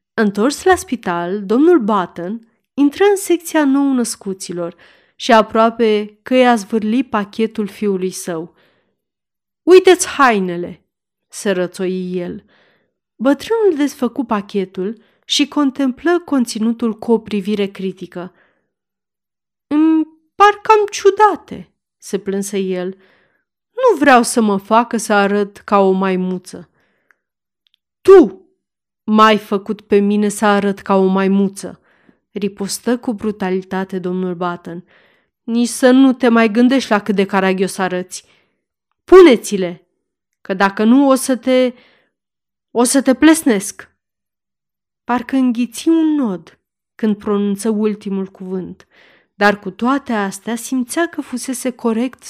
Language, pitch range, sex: Romanian, 195-260 Hz, female